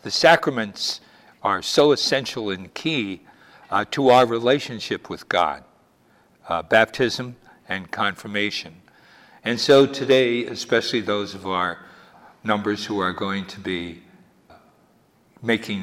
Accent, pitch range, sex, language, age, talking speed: American, 95-125 Hz, male, English, 60-79, 120 wpm